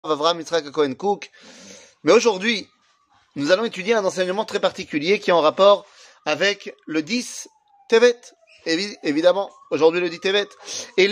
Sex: male